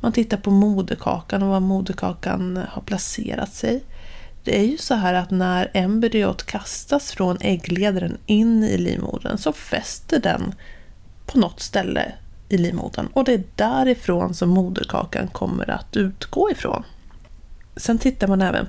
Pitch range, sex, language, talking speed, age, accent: 190-245 Hz, female, Swedish, 150 wpm, 30-49, native